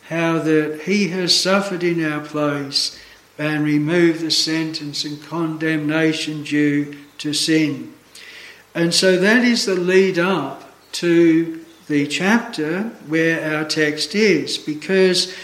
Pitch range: 155-200 Hz